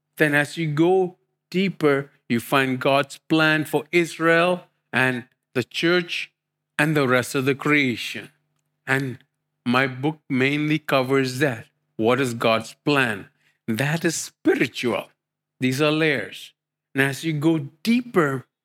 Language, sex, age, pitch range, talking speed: English, male, 50-69, 135-165 Hz, 130 wpm